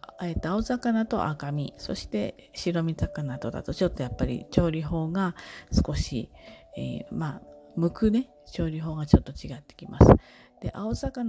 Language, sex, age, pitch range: Japanese, female, 40-59, 140-195 Hz